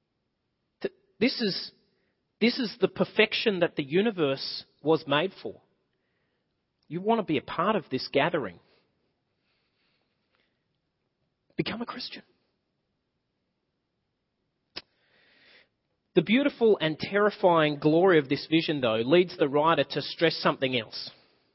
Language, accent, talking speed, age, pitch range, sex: English, Australian, 110 wpm, 30-49, 150-210 Hz, male